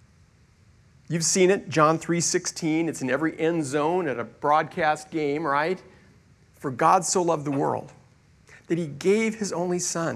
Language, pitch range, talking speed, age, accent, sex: English, 145-205 Hz, 165 wpm, 40-59, American, male